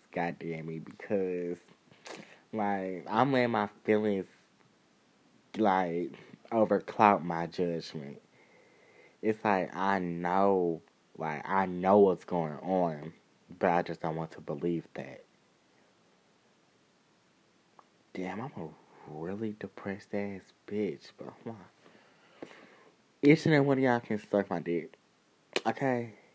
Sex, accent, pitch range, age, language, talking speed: male, American, 90-110 Hz, 20-39, English, 115 wpm